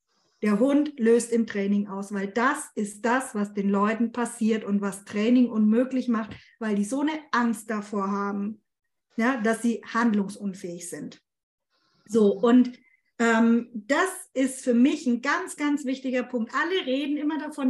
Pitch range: 225-285 Hz